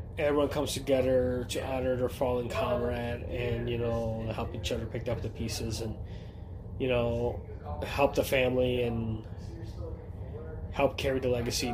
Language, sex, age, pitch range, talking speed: English, male, 20-39, 105-125 Hz, 150 wpm